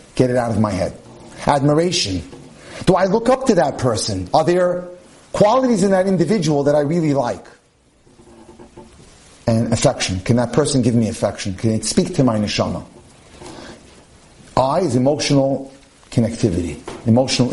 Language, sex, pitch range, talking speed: English, male, 120-175 Hz, 145 wpm